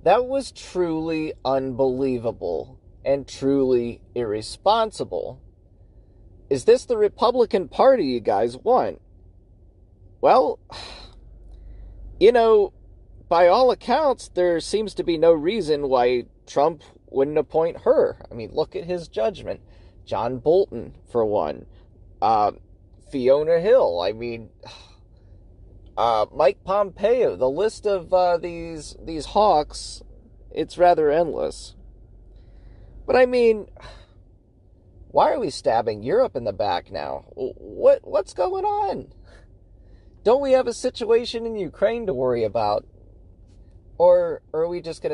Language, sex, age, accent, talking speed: English, male, 30-49, American, 120 wpm